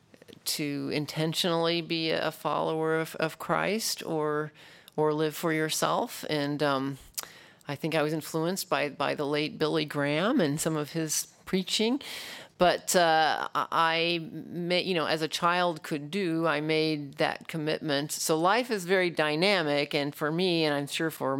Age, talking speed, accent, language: 40-59, 165 wpm, American, English